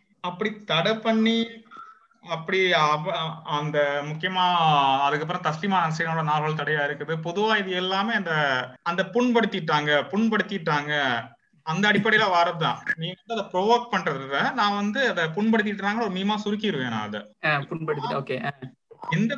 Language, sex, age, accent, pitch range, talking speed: Tamil, male, 30-49, native, 155-210 Hz, 40 wpm